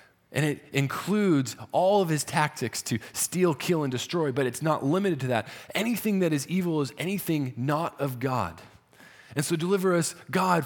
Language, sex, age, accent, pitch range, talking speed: English, male, 20-39, American, 135-175 Hz, 180 wpm